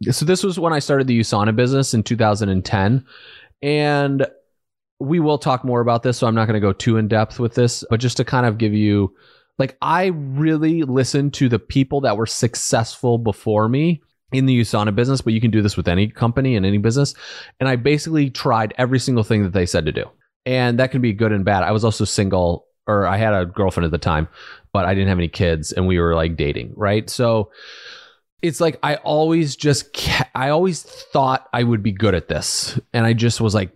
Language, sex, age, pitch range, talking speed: English, male, 30-49, 100-130 Hz, 225 wpm